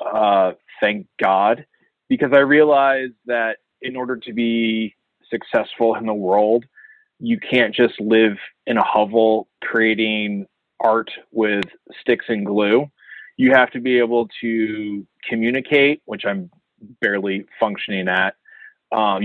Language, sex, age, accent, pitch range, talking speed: English, male, 20-39, American, 110-135 Hz, 130 wpm